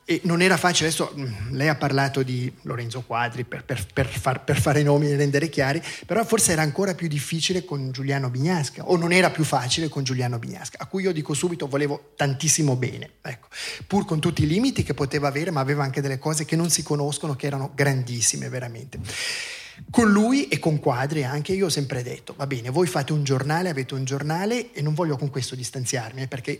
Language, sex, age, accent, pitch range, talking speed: Italian, male, 30-49, native, 130-160 Hz, 215 wpm